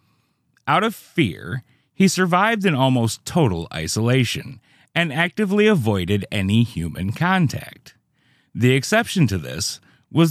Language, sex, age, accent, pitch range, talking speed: English, male, 30-49, American, 110-175 Hz, 115 wpm